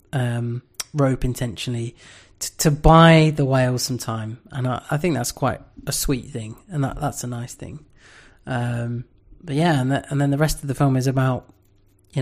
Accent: British